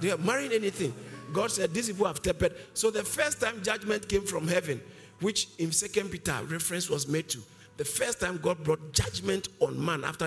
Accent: Nigerian